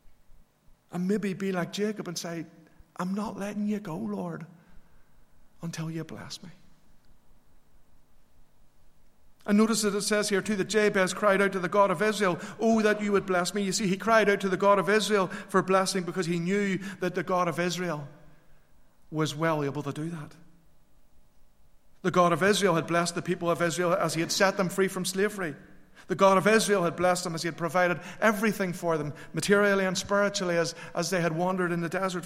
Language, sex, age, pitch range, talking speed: English, male, 50-69, 165-195 Hz, 200 wpm